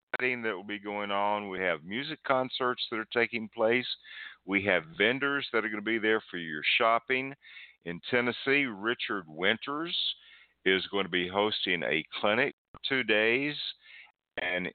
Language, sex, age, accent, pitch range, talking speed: English, male, 50-69, American, 85-110 Hz, 165 wpm